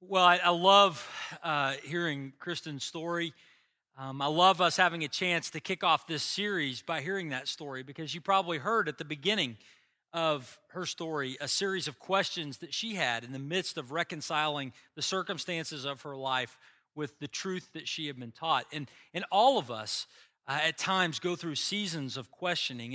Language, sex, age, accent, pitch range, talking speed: English, male, 40-59, American, 140-185 Hz, 190 wpm